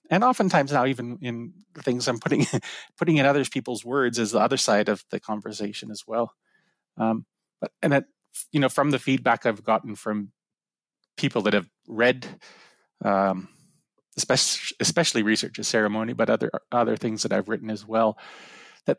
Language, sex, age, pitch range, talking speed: English, male, 30-49, 105-135 Hz, 170 wpm